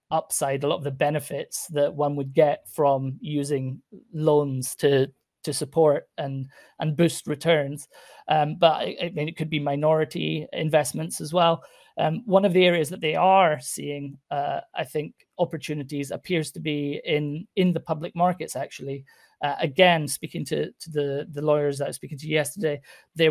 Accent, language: British, English